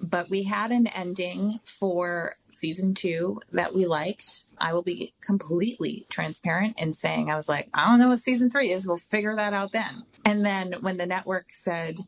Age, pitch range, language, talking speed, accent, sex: 30-49, 150-195 Hz, English, 195 wpm, American, female